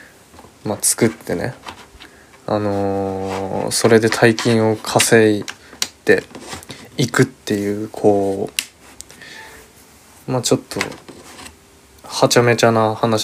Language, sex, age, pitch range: Japanese, male, 20-39, 105-125 Hz